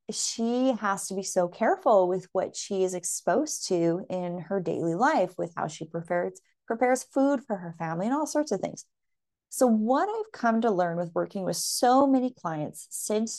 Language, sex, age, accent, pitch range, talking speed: English, female, 30-49, American, 180-240 Hz, 195 wpm